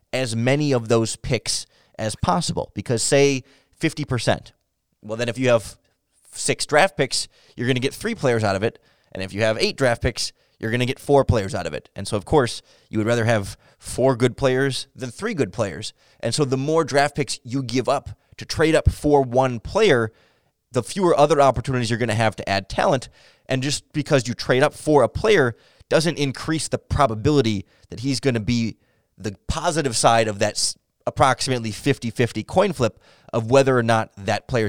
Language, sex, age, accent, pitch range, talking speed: English, male, 20-39, American, 110-140 Hz, 200 wpm